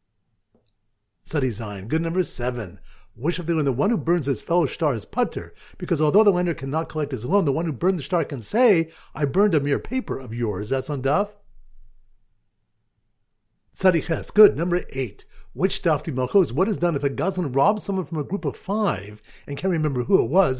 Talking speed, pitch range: 200 wpm, 110-175 Hz